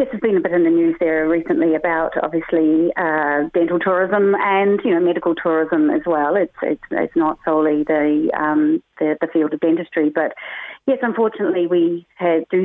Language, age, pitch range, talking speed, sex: English, 40-59, 155-200 Hz, 185 wpm, female